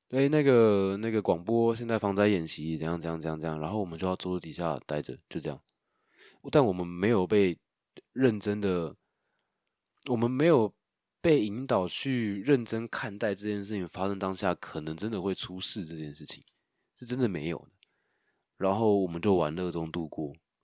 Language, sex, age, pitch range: Chinese, male, 20-39, 80-105 Hz